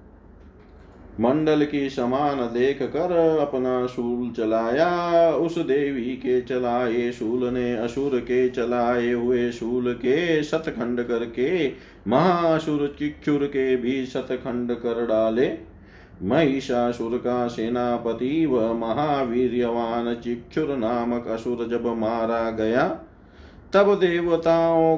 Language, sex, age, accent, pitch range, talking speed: Hindi, male, 30-49, native, 115-145 Hz, 100 wpm